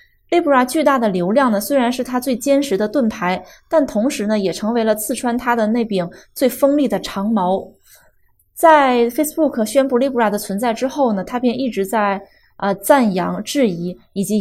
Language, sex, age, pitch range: Chinese, female, 20-39, 200-260 Hz